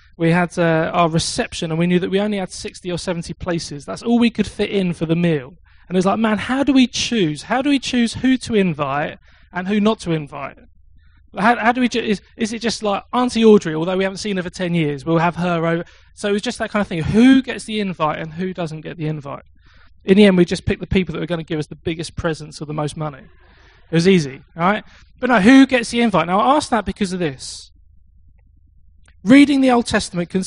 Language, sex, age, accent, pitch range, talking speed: English, male, 20-39, British, 150-215 Hz, 255 wpm